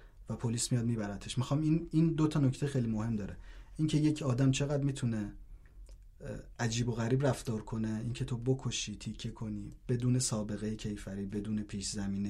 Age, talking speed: 30-49, 165 wpm